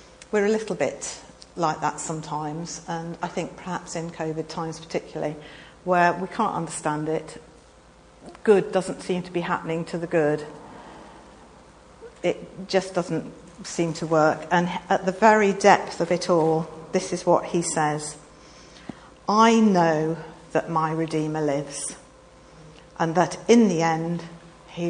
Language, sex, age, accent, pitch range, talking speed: English, female, 50-69, British, 155-180 Hz, 145 wpm